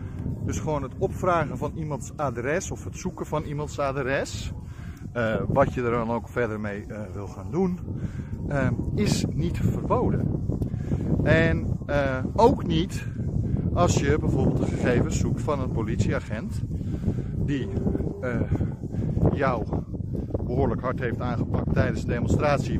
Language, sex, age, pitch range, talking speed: Dutch, male, 50-69, 110-150 Hz, 135 wpm